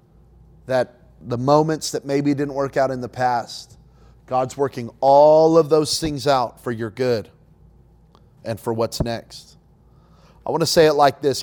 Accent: American